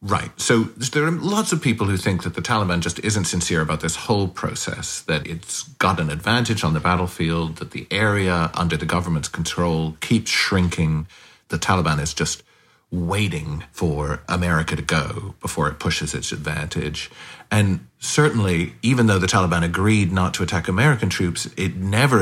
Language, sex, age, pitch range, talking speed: English, male, 40-59, 85-100 Hz, 175 wpm